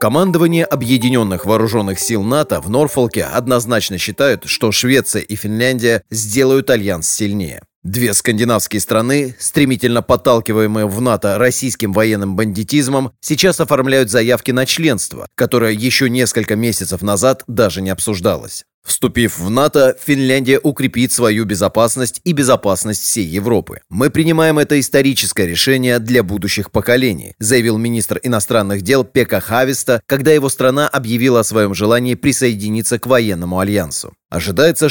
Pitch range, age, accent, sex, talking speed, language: 105-135 Hz, 30-49, native, male, 130 wpm, Russian